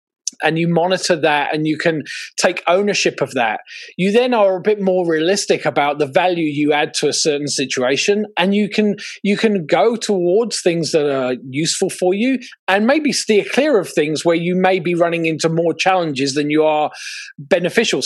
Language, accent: English, British